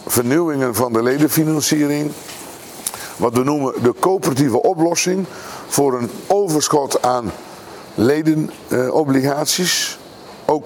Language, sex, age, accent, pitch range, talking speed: Dutch, male, 50-69, Dutch, 125-155 Hz, 90 wpm